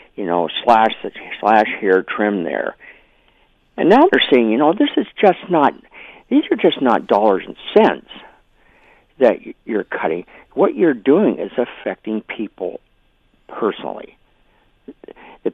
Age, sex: 50-69, male